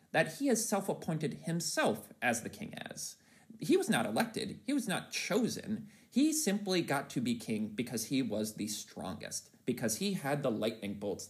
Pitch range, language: 155-235 Hz, English